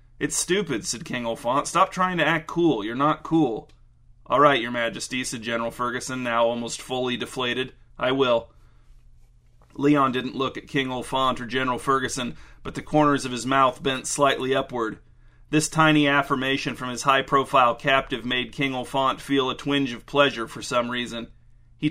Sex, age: male, 30-49